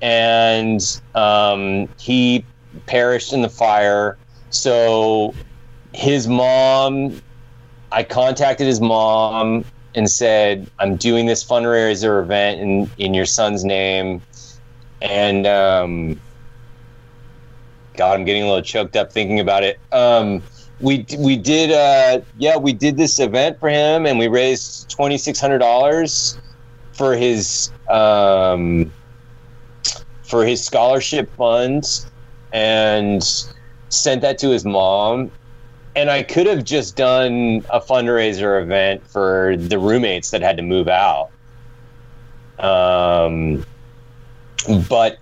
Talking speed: 115 wpm